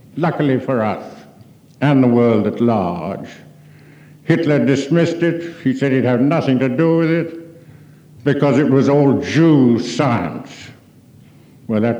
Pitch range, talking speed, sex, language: 120-150 Hz, 140 wpm, male, English